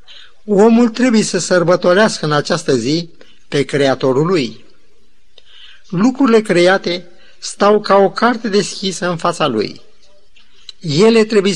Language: Romanian